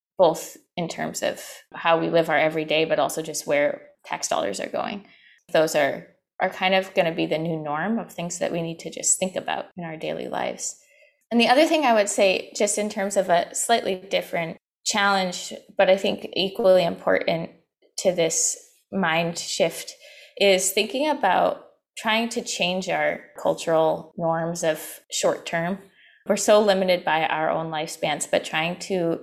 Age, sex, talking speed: 20-39, female, 180 wpm